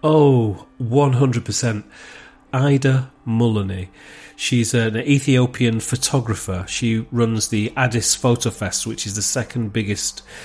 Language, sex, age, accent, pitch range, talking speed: English, male, 40-59, British, 110-130 Hz, 110 wpm